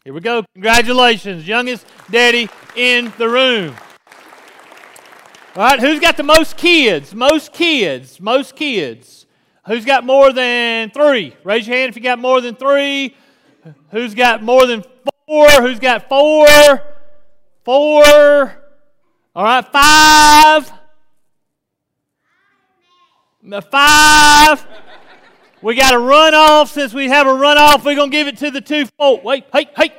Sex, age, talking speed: male, 40-59, 135 wpm